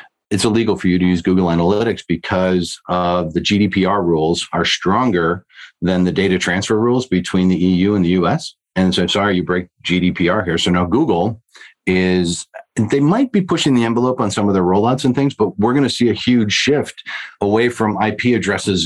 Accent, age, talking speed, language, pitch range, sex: American, 40-59, 195 wpm, English, 85-105 Hz, male